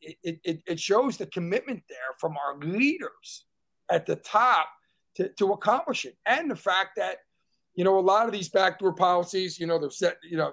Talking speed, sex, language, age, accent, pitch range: 195 wpm, male, English, 50-69, American, 170-200 Hz